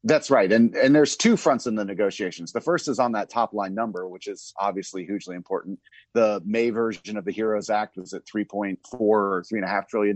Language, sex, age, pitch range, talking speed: English, male, 30-49, 100-120 Hz, 240 wpm